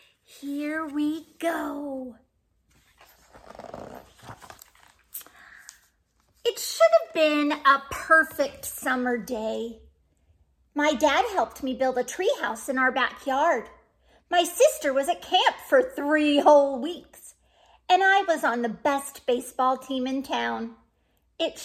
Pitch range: 250-335 Hz